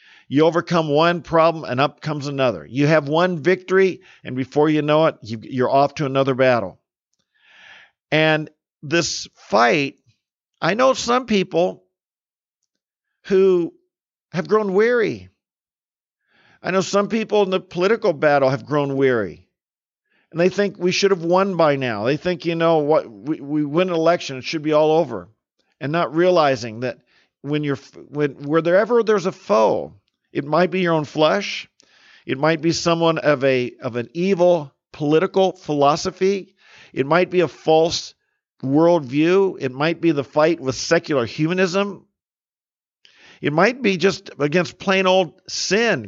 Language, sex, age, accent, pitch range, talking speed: English, male, 50-69, American, 145-190 Hz, 155 wpm